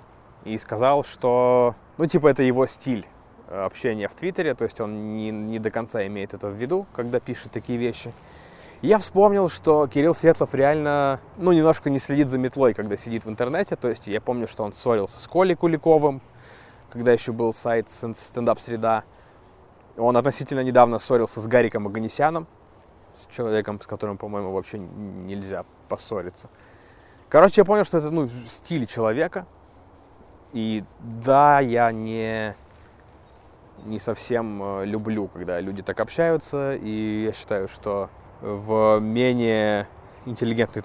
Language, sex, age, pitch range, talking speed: Russian, male, 20-39, 105-130 Hz, 145 wpm